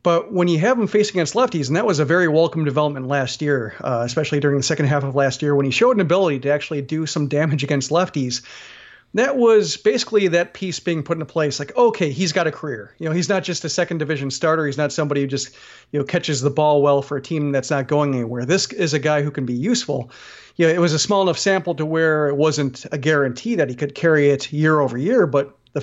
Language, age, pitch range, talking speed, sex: English, 40-59, 140-175 Hz, 260 wpm, male